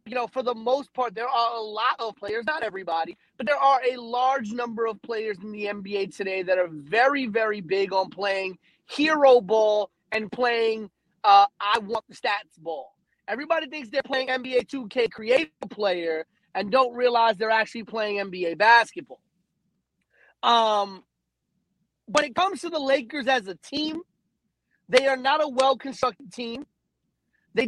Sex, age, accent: male, 30-49, American